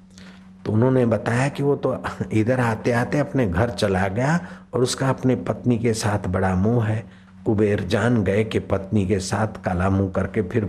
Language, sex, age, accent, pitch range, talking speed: Hindi, male, 60-79, native, 95-130 Hz, 180 wpm